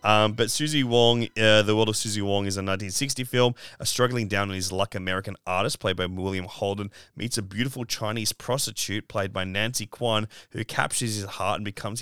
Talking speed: 205 wpm